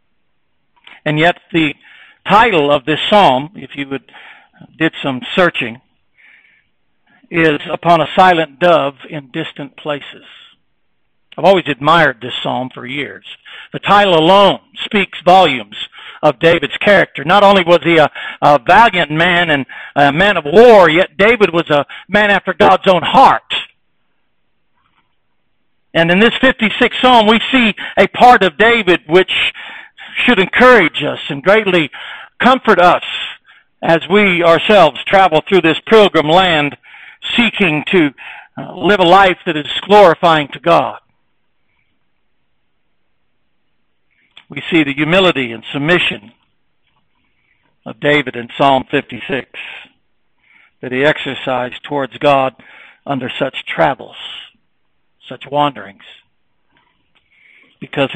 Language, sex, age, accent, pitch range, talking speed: English, male, 60-79, American, 145-200 Hz, 120 wpm